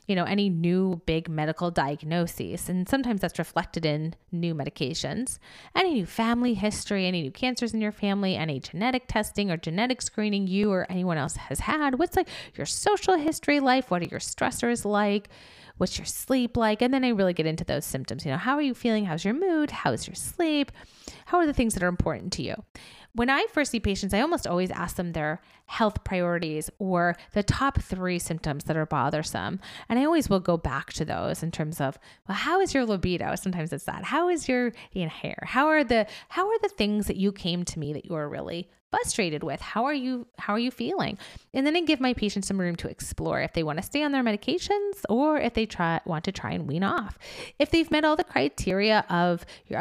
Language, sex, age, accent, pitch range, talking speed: English, female, 30-49, American, 175-260 Hz, 225 wpm